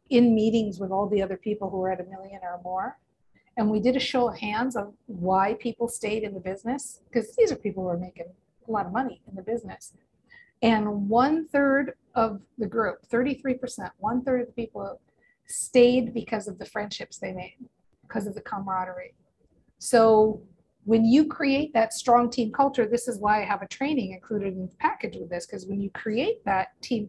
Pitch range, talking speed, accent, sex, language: 200-245 Hz, 205 wpm, American, female, English